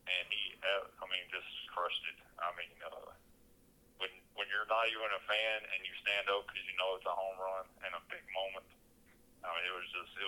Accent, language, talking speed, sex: American, English, 220 wpm, male